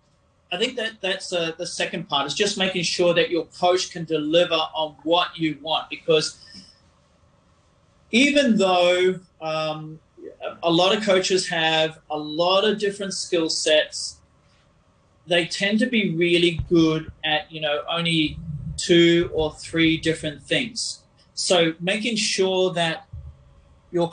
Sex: male